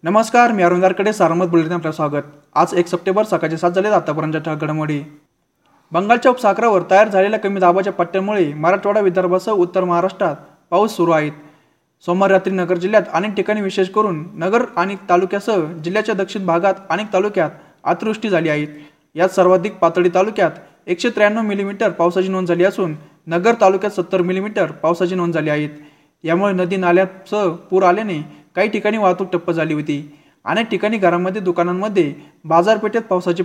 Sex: male